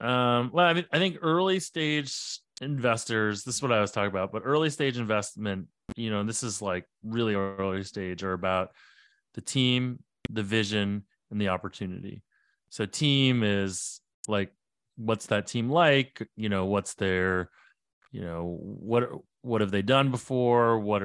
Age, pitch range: 30-49, 100-120 Hz